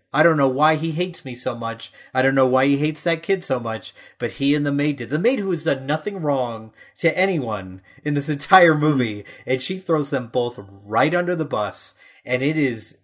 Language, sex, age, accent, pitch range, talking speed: English, male, 30-49, American, 115-145 Hz, 230 wpm